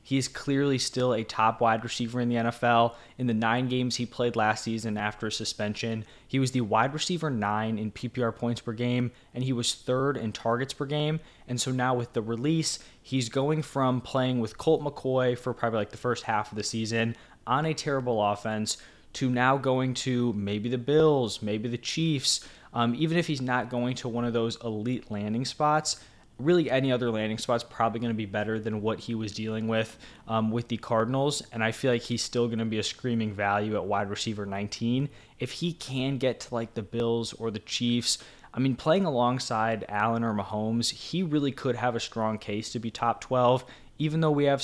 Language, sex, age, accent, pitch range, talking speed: English, male, 20-39, American, 110-130 Hz, 215 wpm